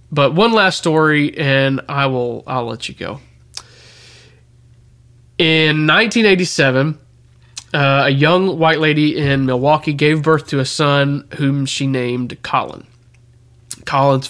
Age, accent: 20-39, American